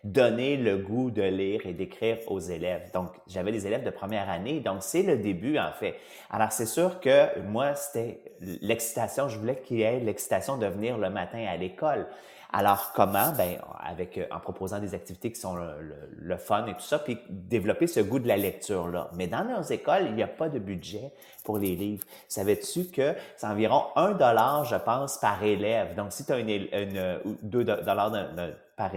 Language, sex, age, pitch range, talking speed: English, male, 30-49, 100-135 Hz, 205 wpm